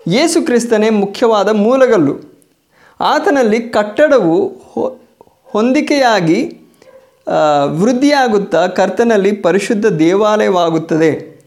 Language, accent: Kannada, native